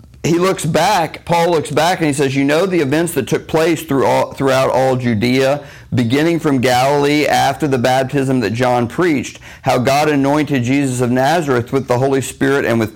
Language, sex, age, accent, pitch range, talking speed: English, male, 50-69, American, 110-135 Hz, 185 wpm